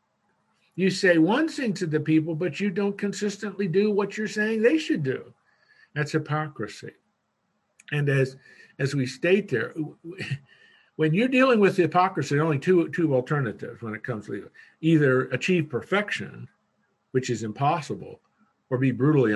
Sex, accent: male, American